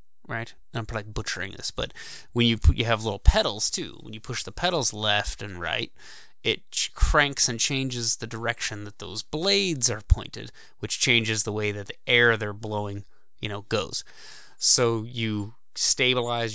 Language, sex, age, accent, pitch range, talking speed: English, male, 20-39, American, 105-130 Hz, 180 wpm